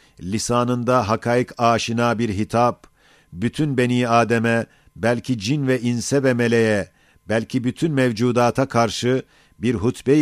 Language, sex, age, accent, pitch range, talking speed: Turkish, male, 50-69, native, 115-130 Hz, 115 wpm